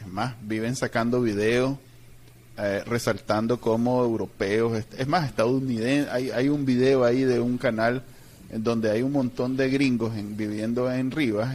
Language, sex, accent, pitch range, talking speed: Spanish, male, Venezuelan, 115-135 Hz, 160 wpm